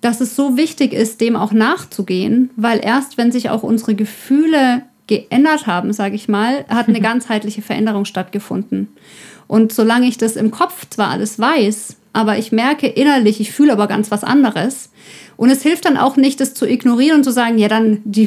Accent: German